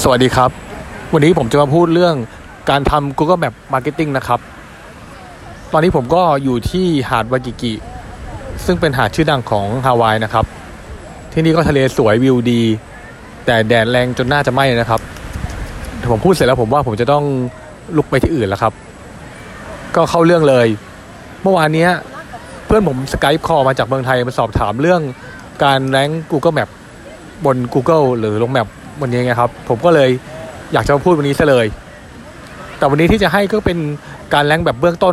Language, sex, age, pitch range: Thai, male, 20-39, 120-160 Hz